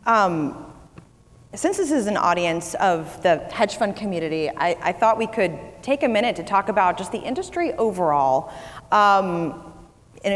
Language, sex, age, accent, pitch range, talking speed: English, female, 30-49, American, 155-210 Hz, 160 wpm